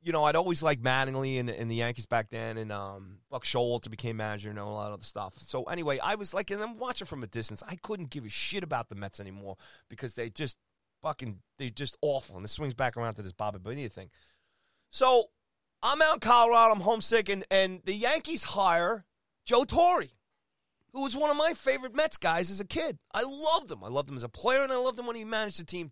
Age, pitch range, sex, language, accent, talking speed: 30-49, 110-170 Hz, male, English, American, 245 wpm